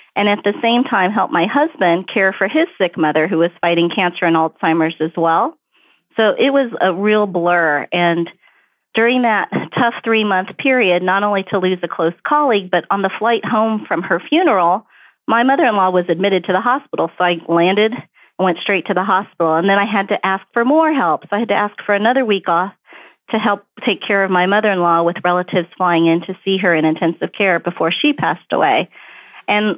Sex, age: female, 40-59